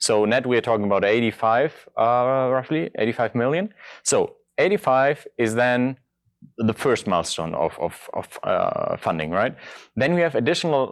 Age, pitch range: 30-49, 100-135 Hz